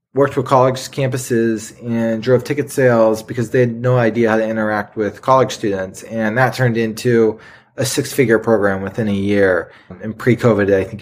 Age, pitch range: 20-39, 105-125 Hz